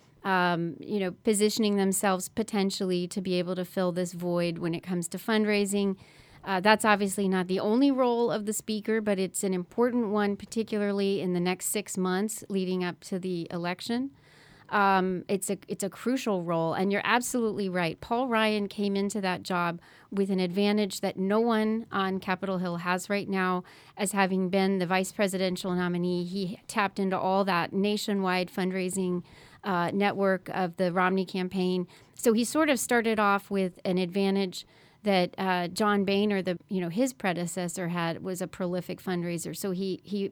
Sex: female